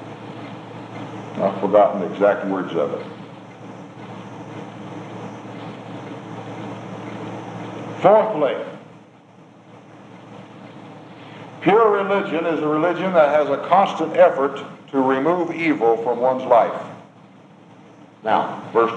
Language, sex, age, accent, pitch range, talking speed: English, male, 60-79, American, 140-200 Hz, 80 wpm